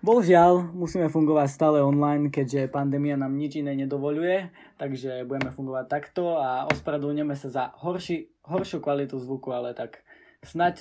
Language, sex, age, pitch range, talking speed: Slovak, male, 20-39, 135-165 Hz, 145 wpm